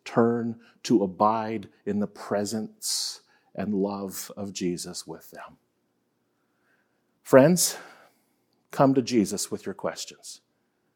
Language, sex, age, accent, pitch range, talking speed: English, male, 50-69, American, 95-125 Hz, 105 wpm